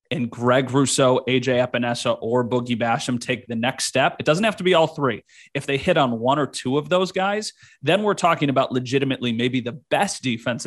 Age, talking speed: 30-49, 215 wpm